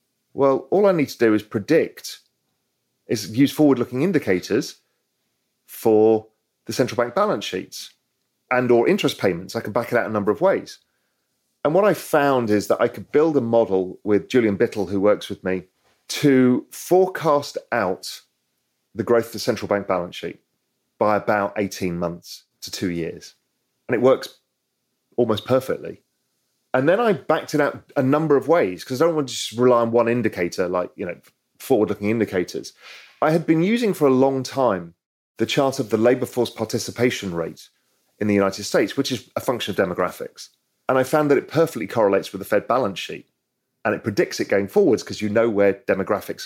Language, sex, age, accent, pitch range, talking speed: English, male, 40-59, British, 100-130 Hz, 190 wpm